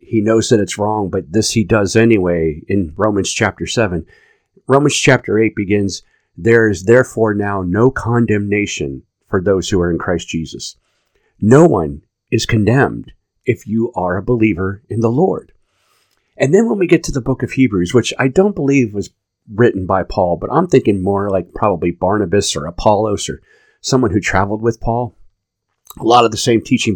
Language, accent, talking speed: English, American, 185 wpm